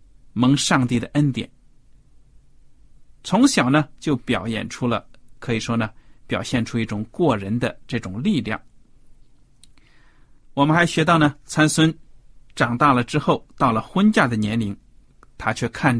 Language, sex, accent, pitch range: Chinese, male, native, 120-170 Hz